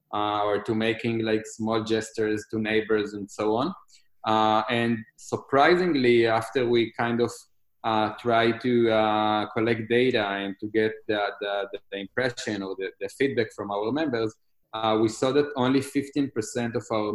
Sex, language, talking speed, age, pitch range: male, English, 165 wpm, 20-39, 105-120 Hz